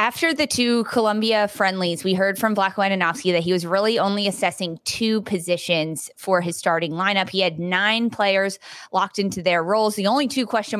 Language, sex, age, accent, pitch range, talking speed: English, female, 20-39, American, 175-215 Hz, 190 wpm